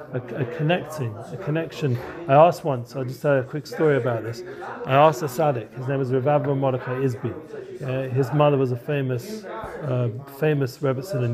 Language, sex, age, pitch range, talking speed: English, male, 40-59, 125-155 Hz, 195 wpm